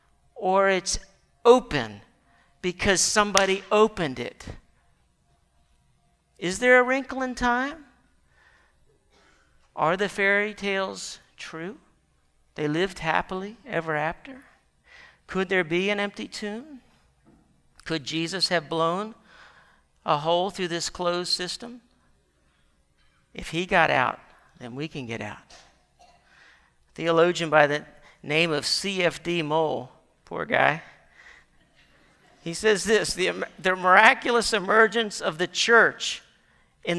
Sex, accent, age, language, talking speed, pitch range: male, American, 50-69, English, 110 wpm, 150-200 Hz